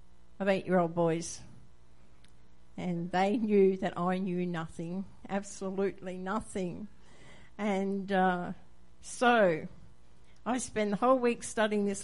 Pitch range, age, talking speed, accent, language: 180-260 Hz, 60-79, 110 wpm, Australian, English